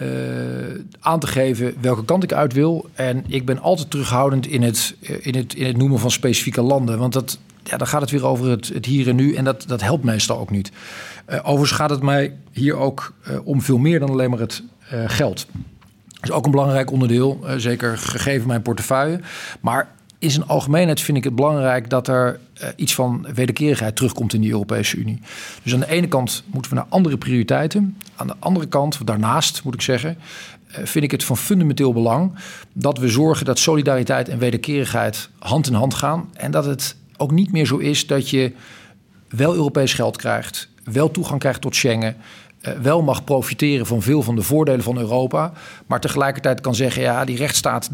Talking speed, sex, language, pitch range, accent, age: 205 wpm, male, Dutch, 120-145 Hz, Dutch, 50-69